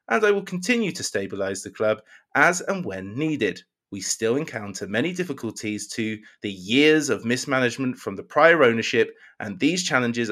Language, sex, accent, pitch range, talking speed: English, male, British, 105-150 Hz, 170 wpm